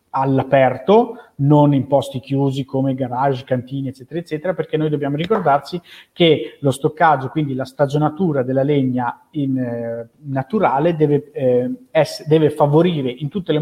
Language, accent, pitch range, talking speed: Italian, native, 130-155 Hz, 145 wpm